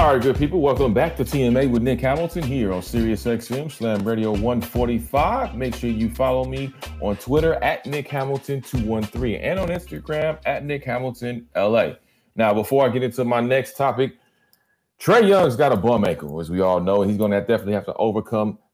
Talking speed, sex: 180 wpm, male